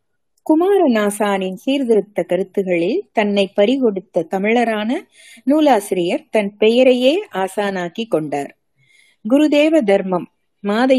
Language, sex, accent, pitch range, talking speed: Tamil, female, native, 195-265 Hz, 80 wpm